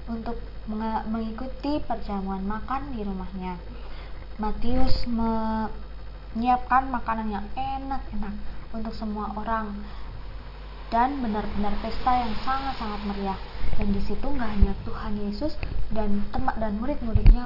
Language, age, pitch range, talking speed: Indonesian, 20-39, 205-245 Hz, 105 wpm